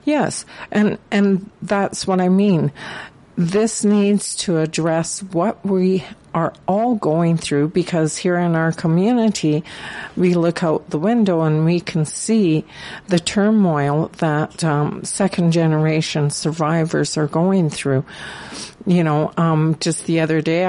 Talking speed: 135 wpm